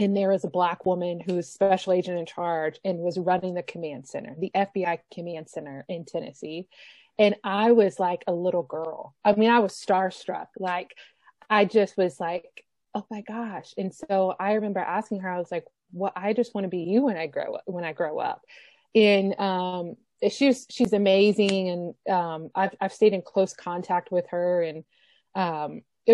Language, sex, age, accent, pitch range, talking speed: English, female, 20-39, American, 175-205 Hz, 195 wpm